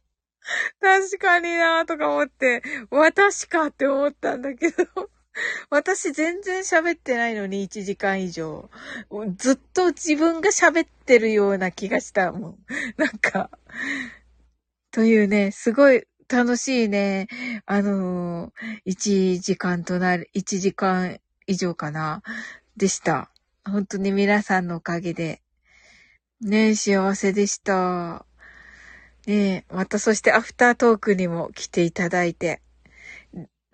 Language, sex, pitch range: Japanese, female, 195-310 Hz